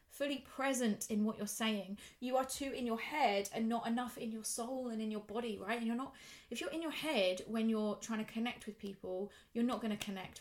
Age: 20-39